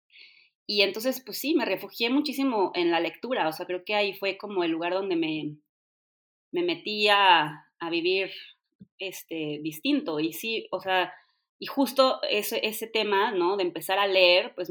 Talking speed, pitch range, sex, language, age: 170 wpm, 165-215 Hz, female, Spanish, 20-39